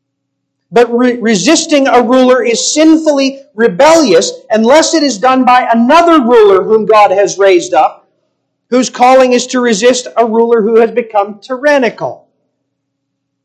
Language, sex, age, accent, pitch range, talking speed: English, male, 40-59, American, 165-255 Hz, 135 wpm